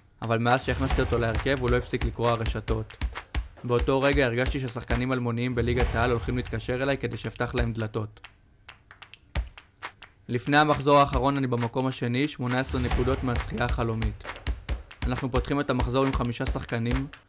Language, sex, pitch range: Hebrew, male, 115-130 Hz